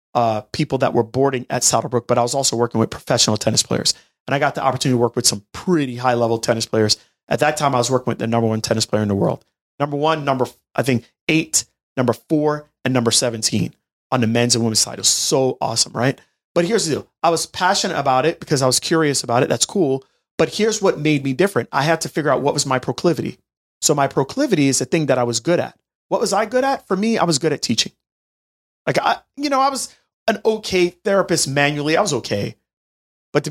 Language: English